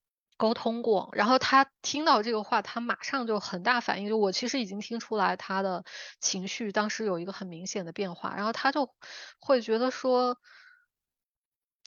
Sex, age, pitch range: female, 20-39, 190-255 Hz